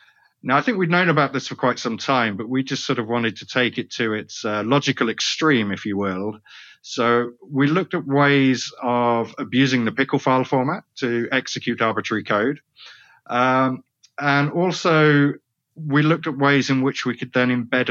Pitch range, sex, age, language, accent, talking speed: 110-135 Hz, male, 30-49, English, British, 190 wpm